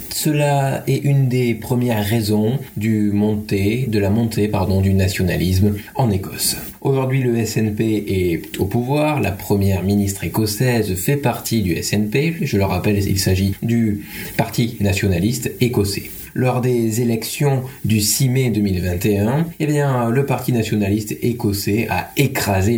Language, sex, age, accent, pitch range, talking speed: French, male, 20-39, French, 105-125 Hz, 140 wpm